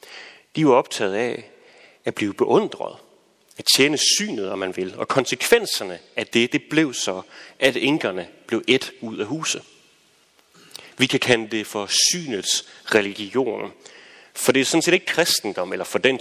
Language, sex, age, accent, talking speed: Danish, male, 30-49, native, 165 wpm